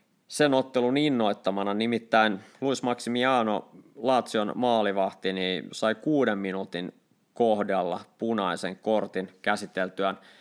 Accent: native